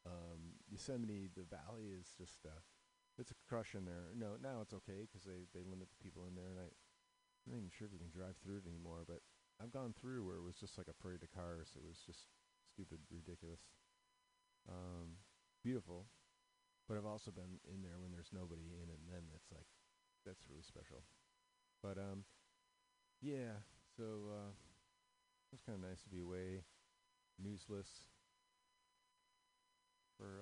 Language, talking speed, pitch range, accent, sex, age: English, 175 wpm, 90-135 Hz, American, male, 40-59